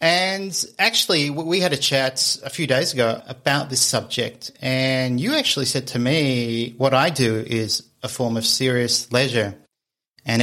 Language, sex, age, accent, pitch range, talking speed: English, male, 30-49, Australian, 120-145 Hz, 165 wpm